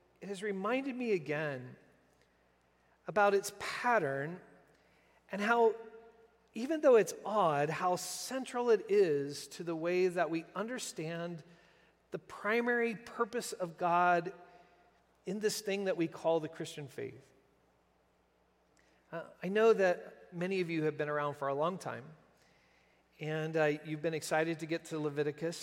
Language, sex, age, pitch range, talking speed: English, male, 40-59, 145-180 Hz, 145 wpm